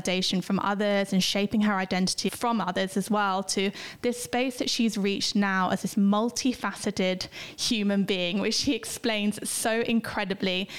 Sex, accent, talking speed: female, British, 150 wpm